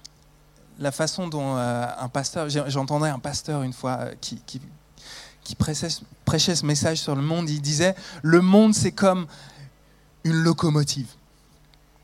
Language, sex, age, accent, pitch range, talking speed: French, male, 20-39, French, 135-170 Hz, 130 wpm